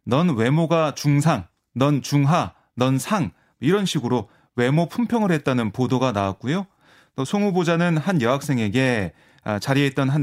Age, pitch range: 30-49, 125-170 Hz